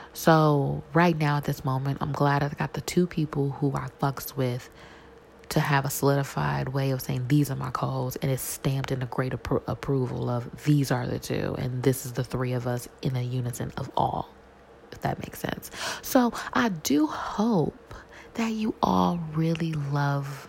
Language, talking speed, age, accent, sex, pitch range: English, 195 wpm, 20-39, American, female, 130-155 Hz